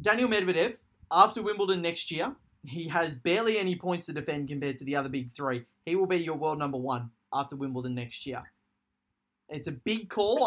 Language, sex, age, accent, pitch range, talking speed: English, male, 20-39, Australian, 140-180 Hz, 195 wpm